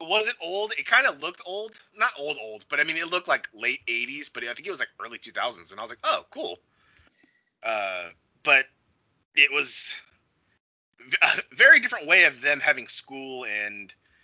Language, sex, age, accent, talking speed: English, male, 30-49, American, 200 wpm